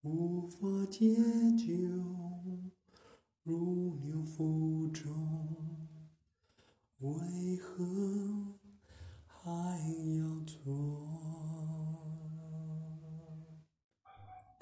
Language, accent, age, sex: Chinese, native, 30-49, male